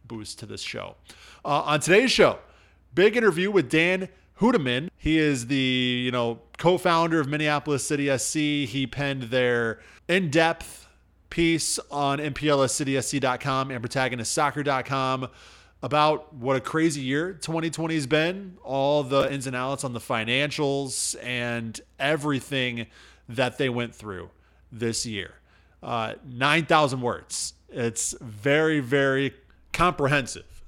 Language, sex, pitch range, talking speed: English, male, 120-150 Hz, 125 wpm